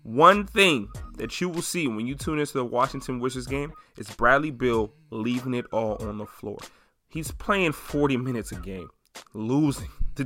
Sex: male